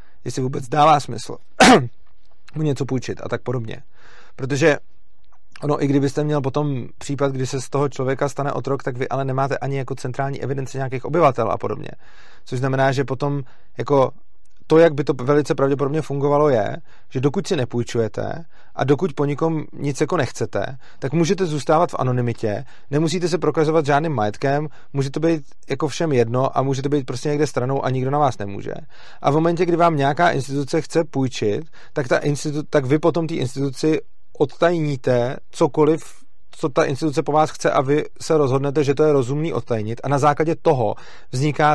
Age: 30-49